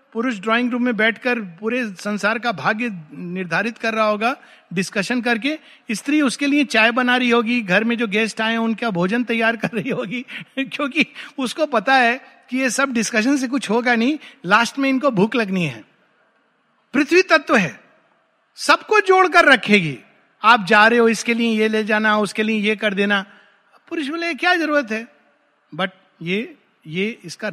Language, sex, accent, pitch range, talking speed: Hindi, male, native, 205-265 Hz, 175 wpm